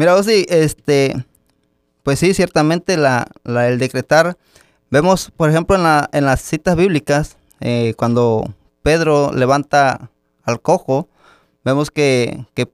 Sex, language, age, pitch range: male, Spanish, 20-39, 140-175 Hz